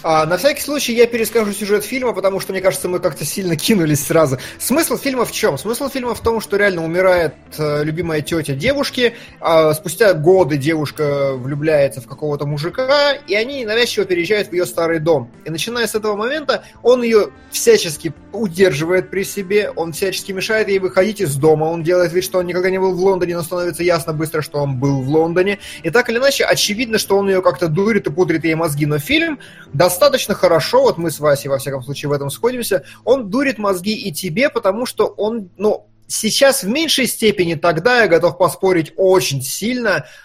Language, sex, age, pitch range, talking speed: Russian, male, 20-39, 150-210 Hz, 195 wpm